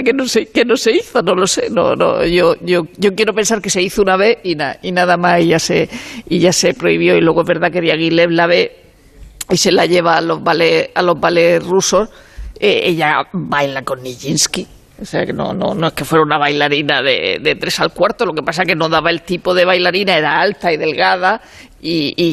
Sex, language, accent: female, Spanish, Spanish